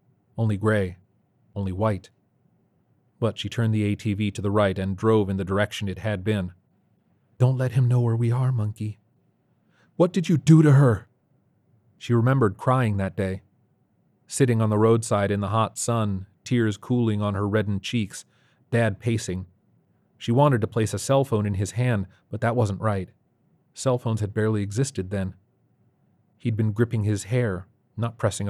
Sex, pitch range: male, 100-120 Hz